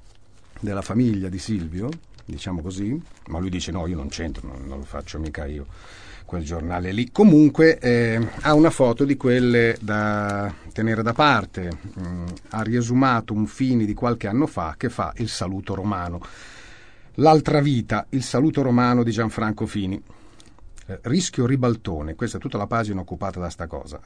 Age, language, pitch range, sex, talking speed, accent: 40-59, Italian, 95-125 Hz, male, 165 wpm, native